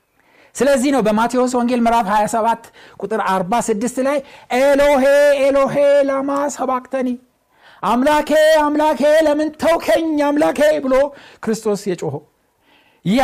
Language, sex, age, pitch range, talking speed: Amharic, male, 60-79, 210-275 Hz, 100 wpm